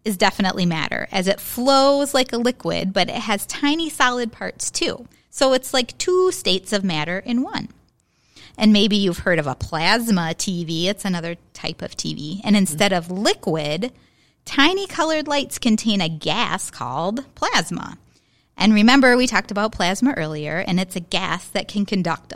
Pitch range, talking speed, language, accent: 180-250 Hz, 170 wpm, English, American